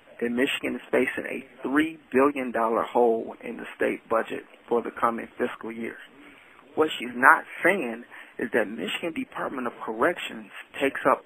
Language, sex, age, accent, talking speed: English, male, 30-49, American, 155 wpm